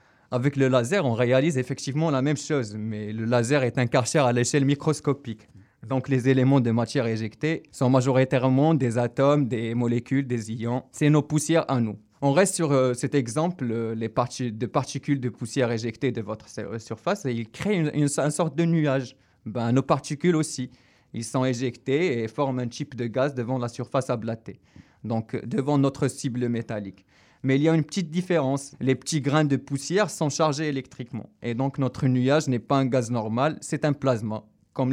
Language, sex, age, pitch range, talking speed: French, male, 20-39, 120-140 Hz, 195 wpm